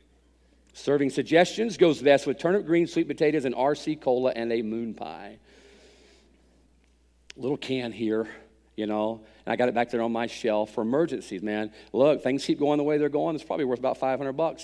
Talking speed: 195 wpm